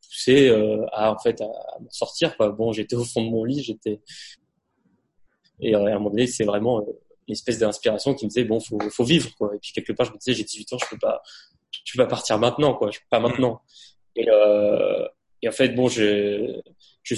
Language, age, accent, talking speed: French, 20-39, French, 220 wpm